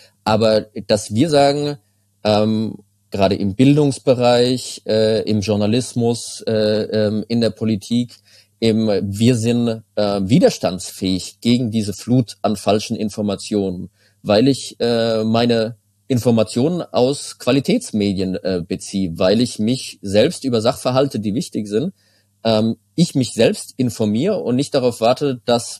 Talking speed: 125 wpm